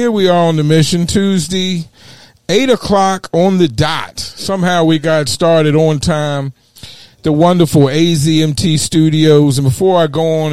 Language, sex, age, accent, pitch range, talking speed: English, male, 40-59, American, 130-160 Hz, 155 wpm